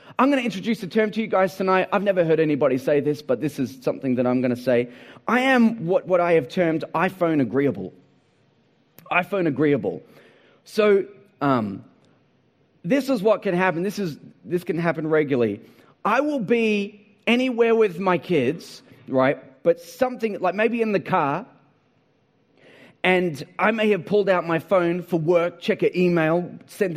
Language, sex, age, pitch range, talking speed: English, male, 30-49, 160-215 Hz, 175 wpm